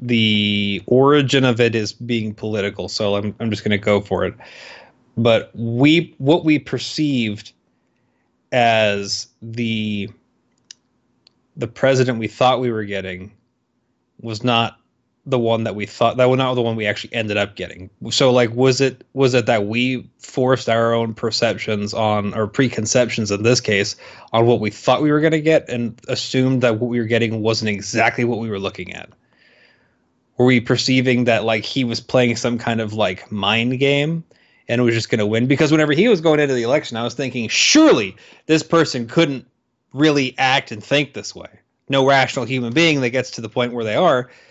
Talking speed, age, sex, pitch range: 190 wpm, 20-39, male, 110-130 Hz